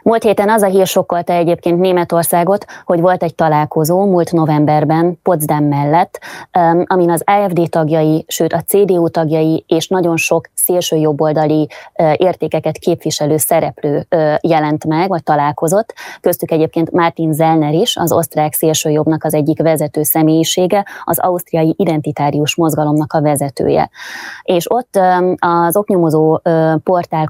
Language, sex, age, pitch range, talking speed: Hungarian, female, 20-39, 155-180 Hz, 125 wpm